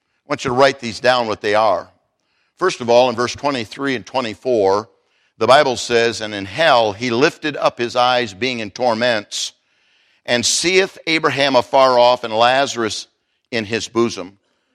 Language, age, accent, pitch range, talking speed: English, 50-69, American, 120-150 Hz, 170 wpm